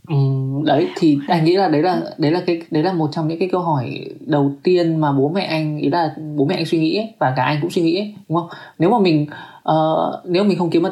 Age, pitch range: 20-39, 145-180 Hz